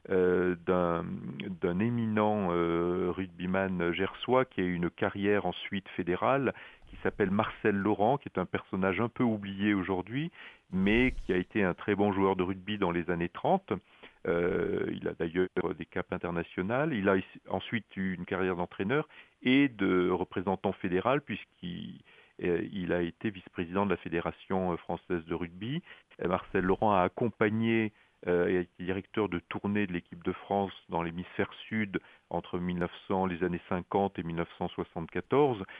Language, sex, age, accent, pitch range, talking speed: French, male, 40-59, French, 90-110 Hz, 160 wpm